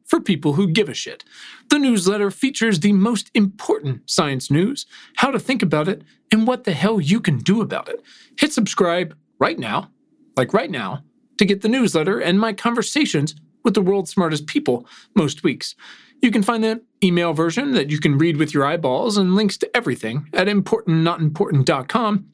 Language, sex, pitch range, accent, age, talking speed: English, male, 160-230 Hz, American, 40-59, 185 wpm